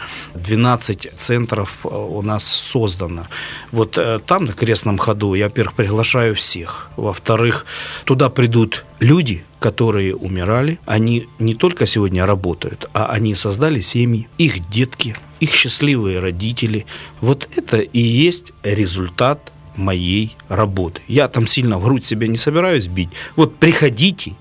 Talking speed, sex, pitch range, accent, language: 130 wpm, male, 100-140 Hz, native, Russian